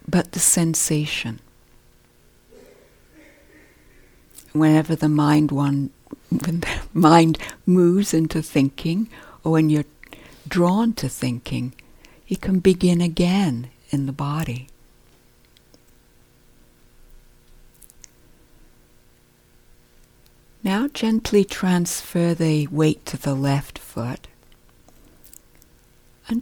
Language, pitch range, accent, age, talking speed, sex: English, 105-175 Hz, American, 60-79, 80 wpm, female